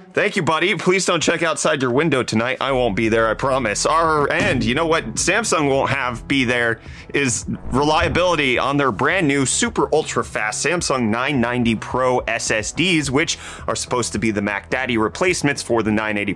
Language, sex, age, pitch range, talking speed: English, male, 30-49, 110-150 Hz, 185 wpm